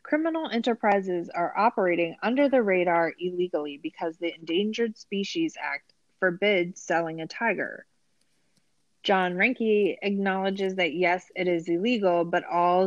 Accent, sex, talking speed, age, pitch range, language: American, female, 125 wpm, 30-49, 165-210 Hz, English